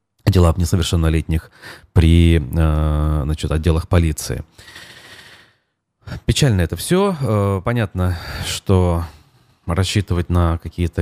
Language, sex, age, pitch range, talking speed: Russian, male, 30-49, 80-100 Hz, 80 wpm